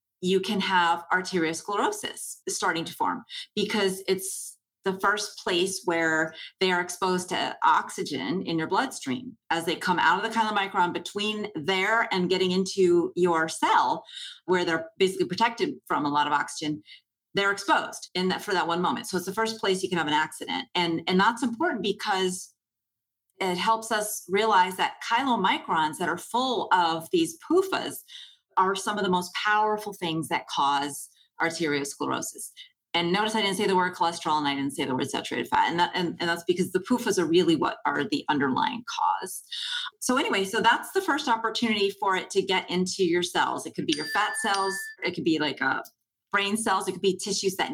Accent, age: American, 30-49